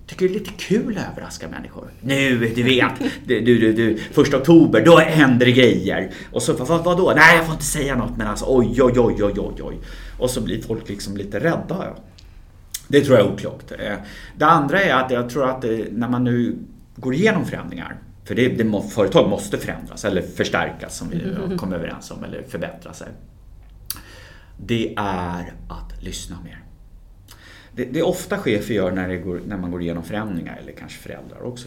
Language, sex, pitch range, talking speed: English, male, 95-125 Hz, 195 wpm